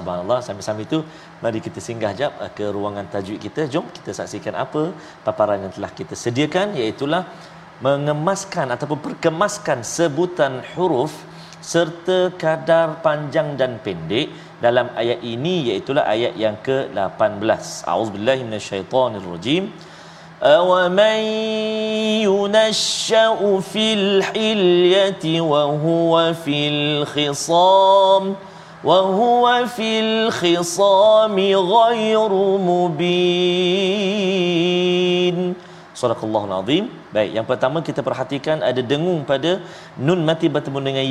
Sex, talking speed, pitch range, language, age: male, 100 wpm, 140-200 Hz, Malayalam, 40-59